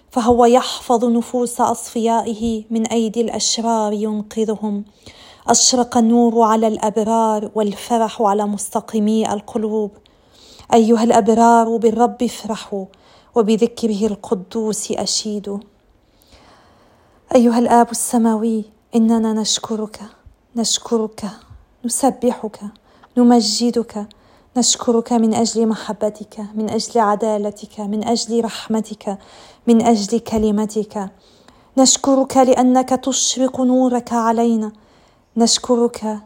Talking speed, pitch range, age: 85 wpm, 215-235 Hz, 40-59